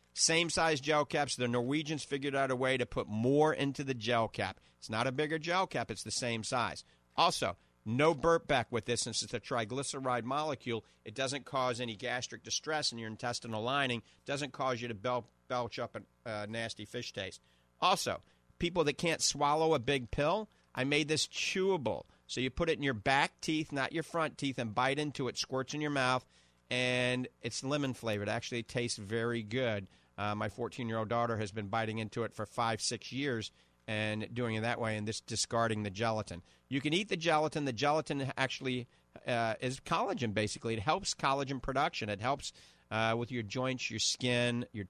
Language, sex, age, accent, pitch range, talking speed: English, male, 50-69, American, 115-140 Hz, 200 wpm